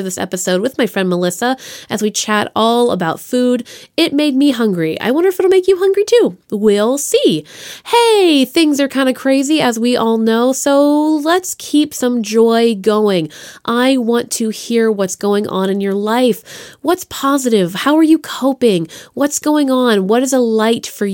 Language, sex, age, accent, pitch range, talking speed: English, female, 20-39, American, 205-285 Hz, 185 wpm